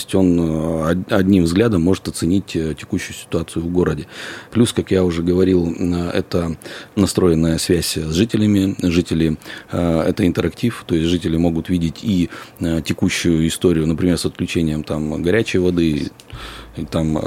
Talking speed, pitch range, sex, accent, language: 140 wpm, 80-90 Hz, male, native, Russian